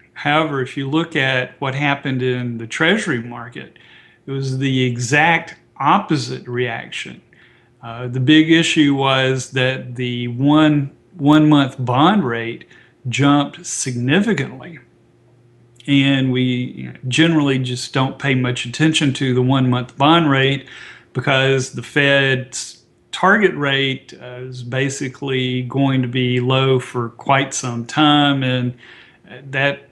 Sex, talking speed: male, 125 wpm